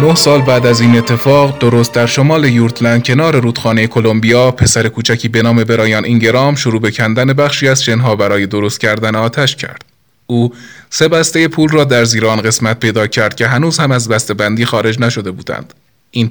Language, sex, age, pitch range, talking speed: Persian, male, 20-39, 110-135 Hz, 185 wpm